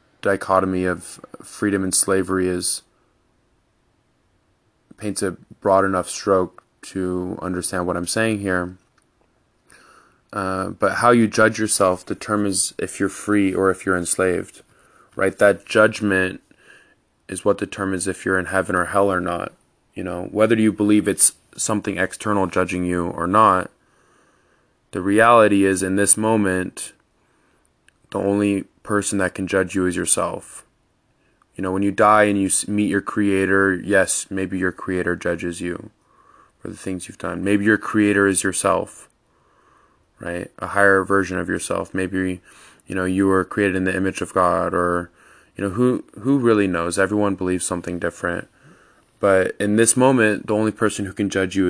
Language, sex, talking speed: English, male, 160 wpm